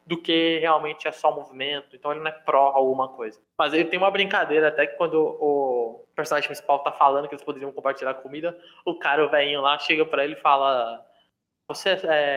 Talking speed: 205 wpm